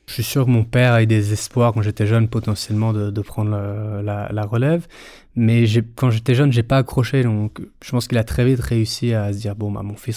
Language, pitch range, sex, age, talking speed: French, 110-125 Hz, male, 20-39, 270 wpm